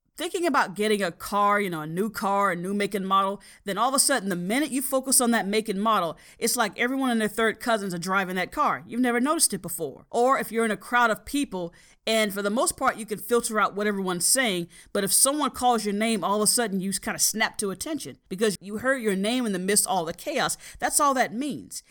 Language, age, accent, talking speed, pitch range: English, 40-59, American, 265 wpm, 195-260 Hz